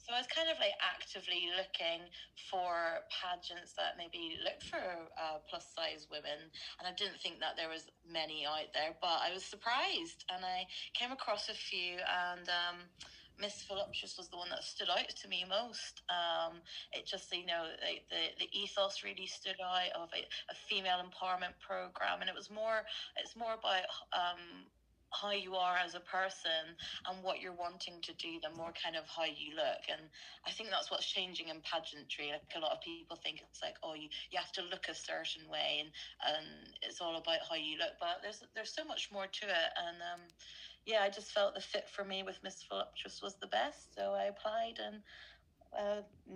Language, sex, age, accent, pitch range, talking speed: English, female, 20-39, British, 165-205 Hz, 205 wpm